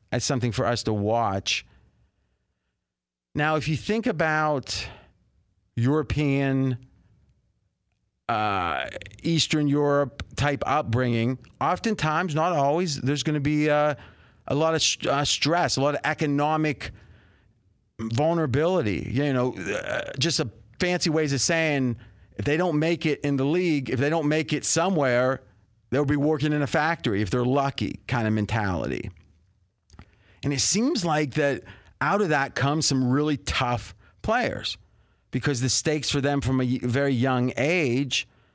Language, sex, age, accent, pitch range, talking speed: English, male, 40-59, American, 105-150 Hz, 145 wpm